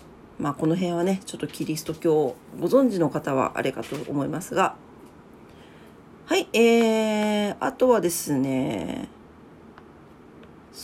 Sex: female